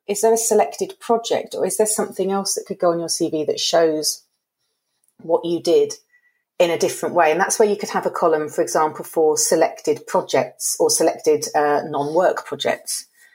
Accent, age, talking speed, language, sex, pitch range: British, 40-59, 195 wpm, English, female, 155-225 Hz